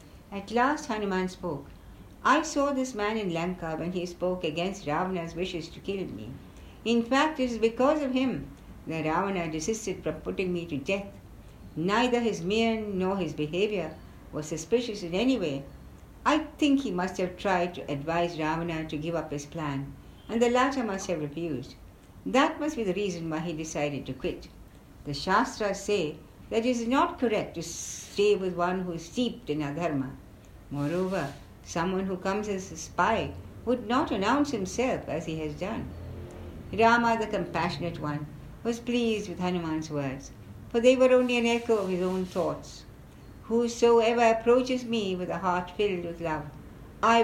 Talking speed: 175 wpm